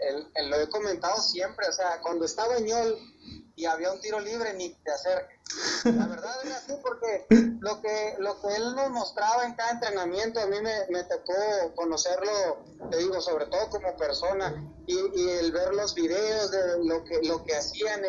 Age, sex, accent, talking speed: 30-49, male, Mexican, 190 wpm